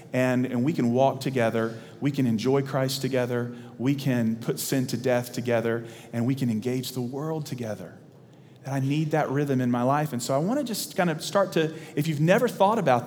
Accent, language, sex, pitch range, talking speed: American, English, male, 125-165 Hz, 220 wpm